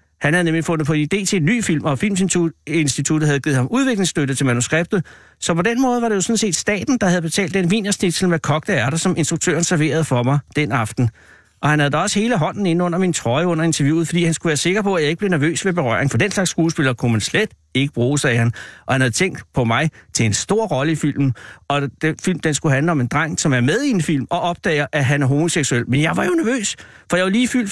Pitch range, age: 140-195 Hz, 60-79